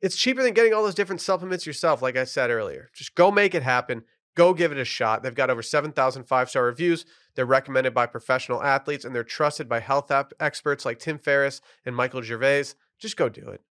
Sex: male